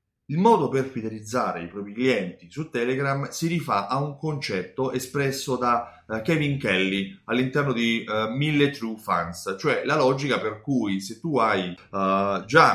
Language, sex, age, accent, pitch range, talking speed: Italian, male, 30-49, native, 110-145 Hz, 160 wpm